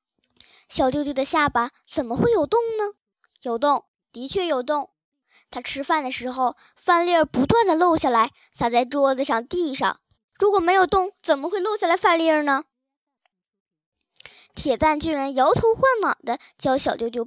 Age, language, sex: 10-29, Chinese, male